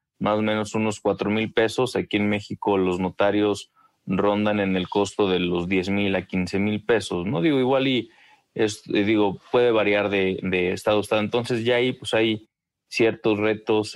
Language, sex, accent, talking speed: Spanish, male, Mexican, 190 wpm